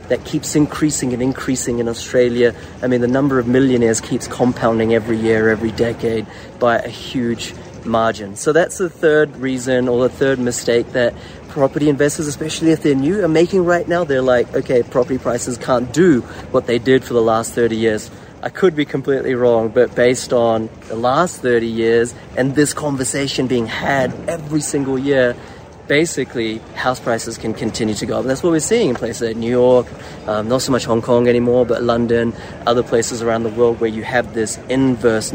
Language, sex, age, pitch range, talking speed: English, male, 30-49, 120-150 Hz, 195 wpm